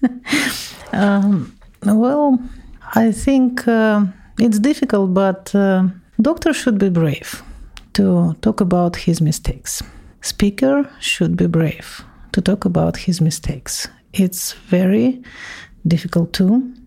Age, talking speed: 50-69, 110 wpm